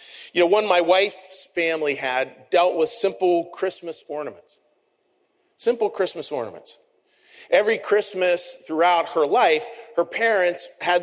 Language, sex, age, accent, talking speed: English, male, 40-59, American, 125 wpm